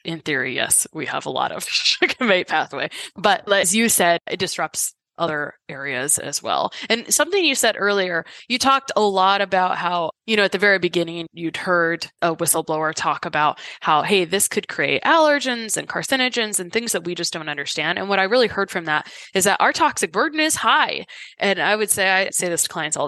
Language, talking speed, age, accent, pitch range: English, 215 wpm, 20-39, American, 170-220 Hz